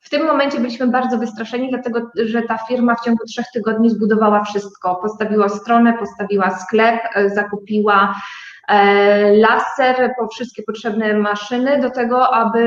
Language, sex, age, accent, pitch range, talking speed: Polish, female, 20-39, native, 210-240 Hz, 135 wpm